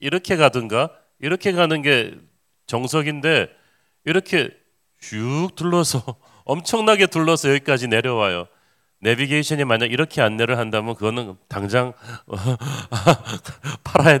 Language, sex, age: Korean, male, 40-59